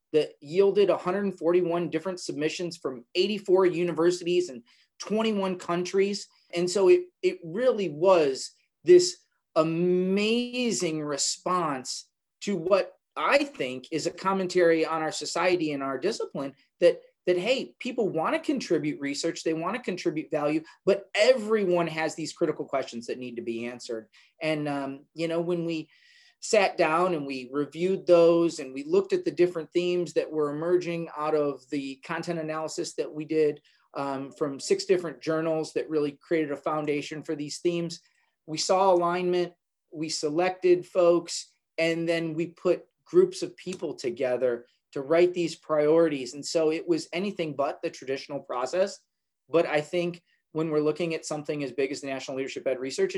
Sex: male